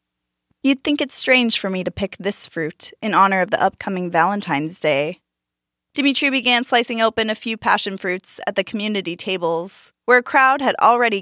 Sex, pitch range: female, 180-235 Hz